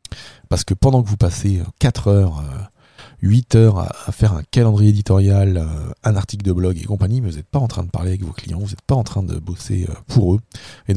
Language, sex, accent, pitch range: French, male, French, 90-115 Hz